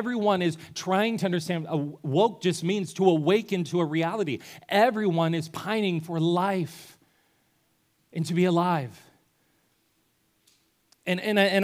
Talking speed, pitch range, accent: 120 wpm, 150-195 Hz, American